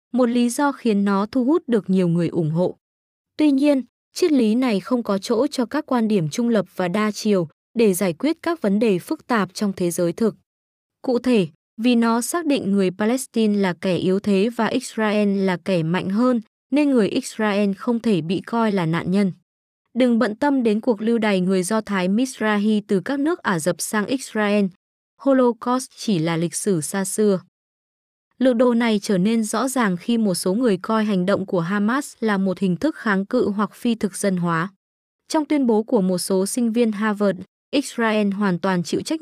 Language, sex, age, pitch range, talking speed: Vietnamese, female, 20-39, 190-240 Hz, 205 wpm